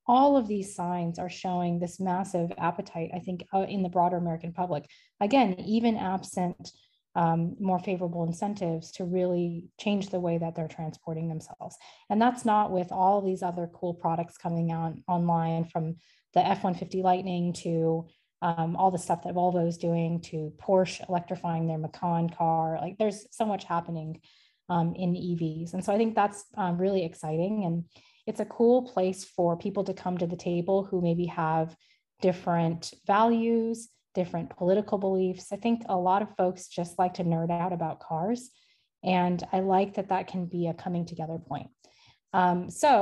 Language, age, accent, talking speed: English, 20-39, American, 175 wpm